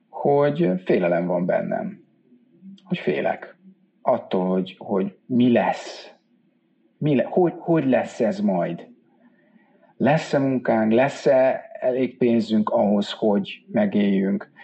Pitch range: 115-170 Hz